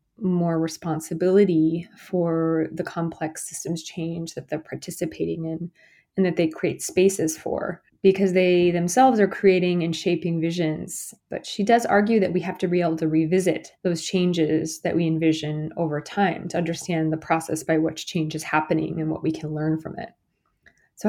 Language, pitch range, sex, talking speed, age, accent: English, 165-195 Hz, female, 175 wpm, 20-39, American